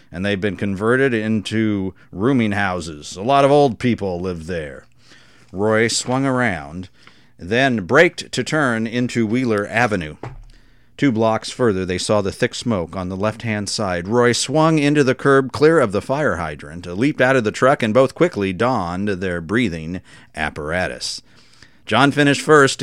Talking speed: 165 wpm